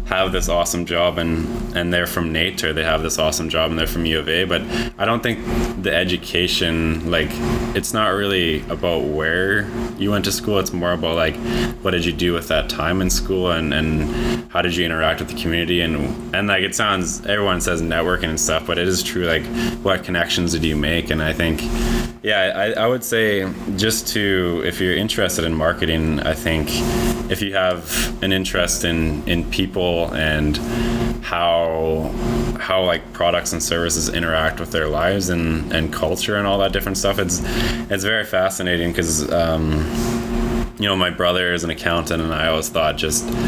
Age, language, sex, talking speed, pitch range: 20-39, English, male, 195 wpm, 80-105 Hz